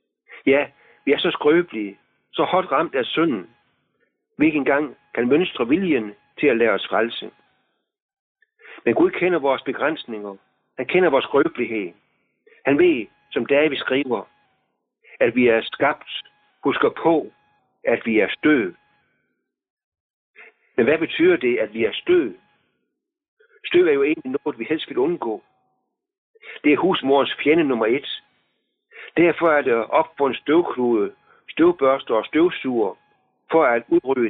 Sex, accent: male, native